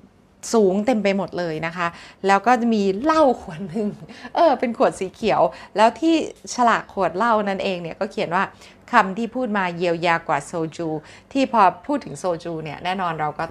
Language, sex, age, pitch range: Thai, female, 20-39, 165-205 Hz